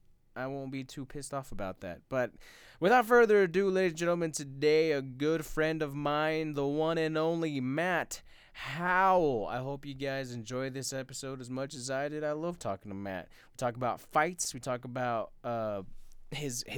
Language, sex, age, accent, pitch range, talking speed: English, male, 20-39, American, 115-155 Hz, 185 wpm